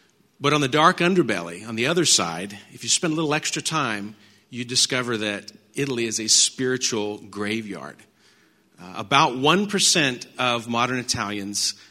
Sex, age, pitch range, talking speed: male, 40-59, 115-150 Hz, 150 wpm